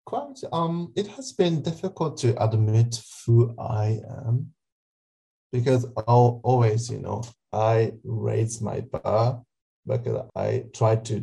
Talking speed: 130 wpm